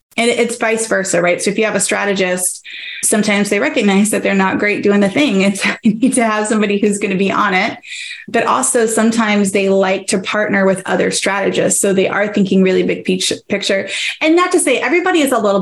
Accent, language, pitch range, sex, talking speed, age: American, English, 190-225 Hz, female, 225 wpm, 20-39